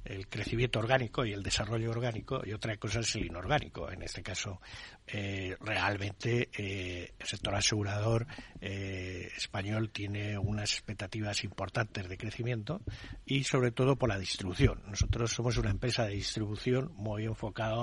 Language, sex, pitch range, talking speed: Spanish, male, 100-125 Hz, 150 wpm